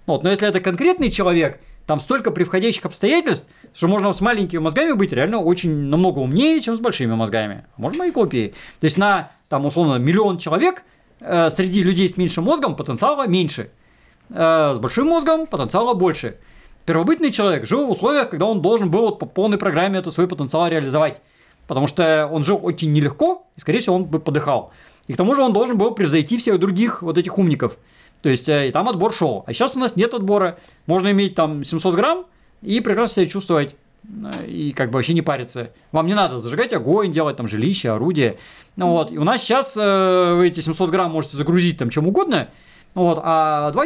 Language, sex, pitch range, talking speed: Russian, male, 155-205 Hz, 195 wpm